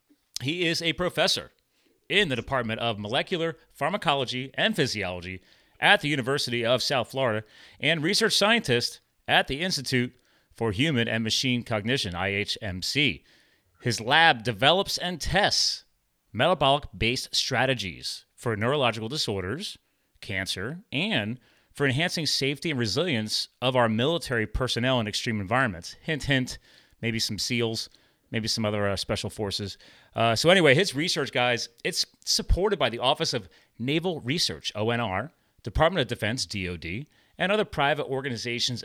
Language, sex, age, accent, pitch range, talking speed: English, male, 30-49, American, 110-145 Hz, 135 wpm